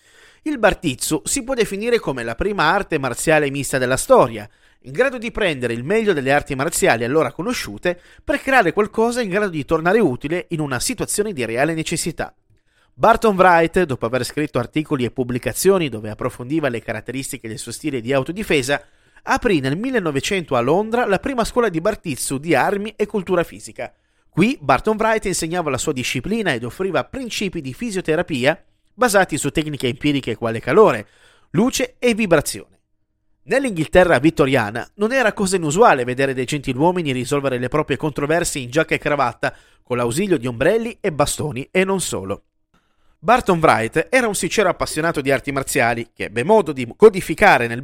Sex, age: male, 30-49